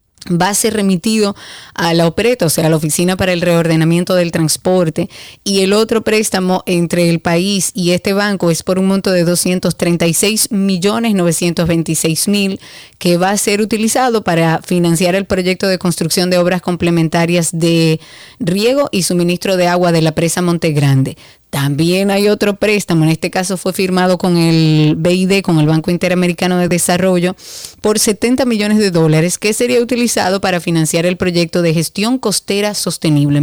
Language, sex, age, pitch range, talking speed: Spanish, female, 30-49, 170-200 Hz, 165 wpm